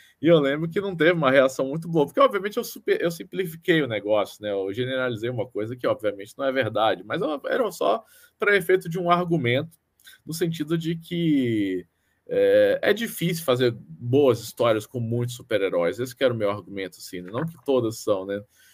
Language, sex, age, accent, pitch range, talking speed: Portuguese, male, 20-39, Brazilian, 115-165 Hz, 200 wpm